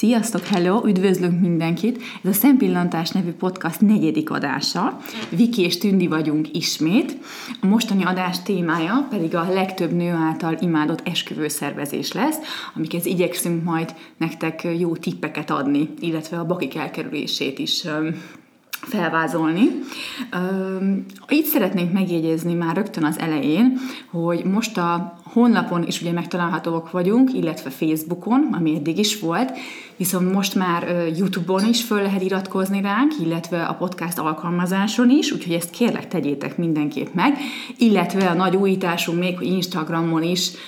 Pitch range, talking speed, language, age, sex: 165-205 Hz, 135 wpm, Hungarian, 30-49, female